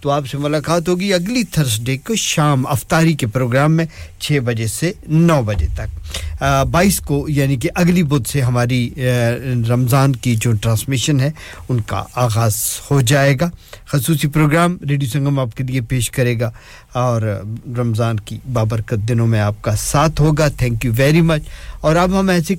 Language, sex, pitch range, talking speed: English, male, 120-155 Hz, 160 wpm